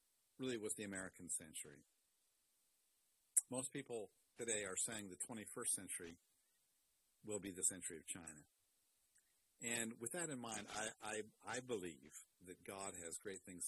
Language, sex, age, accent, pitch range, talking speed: English, male, 50-69, American, 90-110 Hz, 145 wpm